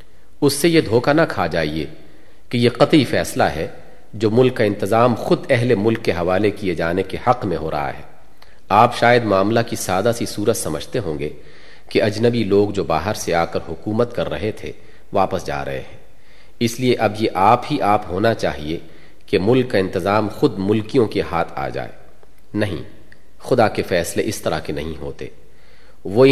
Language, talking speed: Urdu, 190 wpm